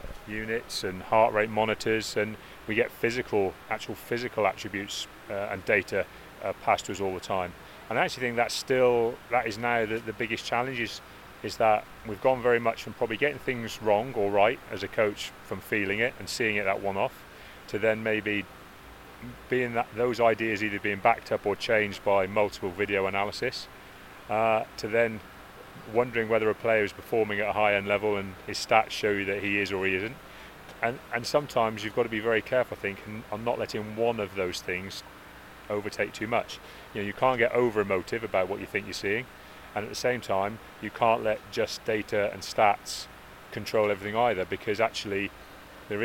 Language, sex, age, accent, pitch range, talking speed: English, male, 30-49, British, 100-115 Hz, 200 wpm